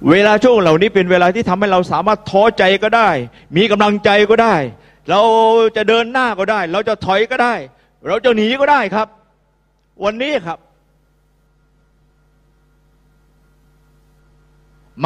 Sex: male